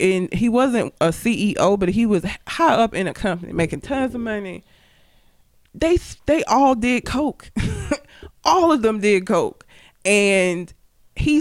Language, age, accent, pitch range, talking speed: English, 20-39, American, 175-270 Hz, 155 wpm